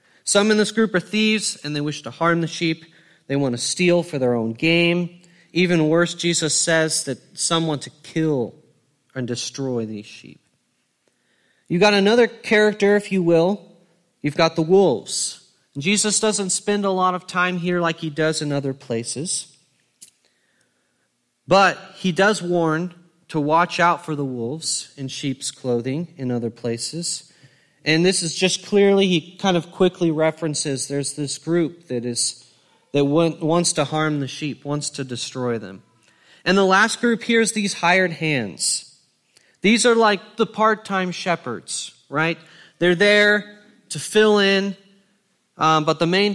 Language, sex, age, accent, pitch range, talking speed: English, male, 30-49, American, 145-195 Hz, 160 wpm